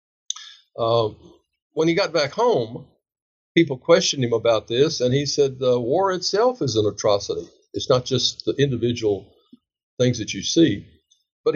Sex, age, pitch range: male, 60-79, 115-195 Hz